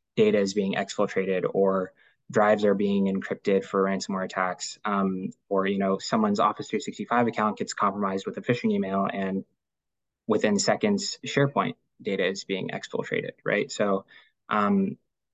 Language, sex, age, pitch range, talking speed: English, male, 20-39, 95-120 Hz, 145 wpm